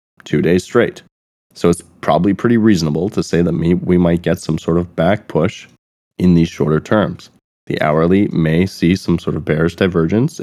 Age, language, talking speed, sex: 20-39, English, 185 wpm, male